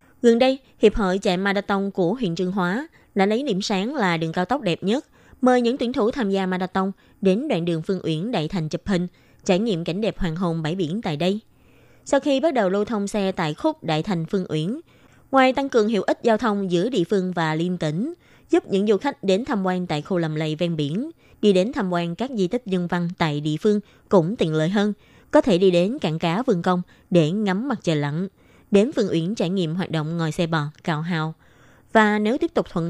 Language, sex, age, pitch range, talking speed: Vietnamese, female, 20-39, 175-225 Hz, 240 wpm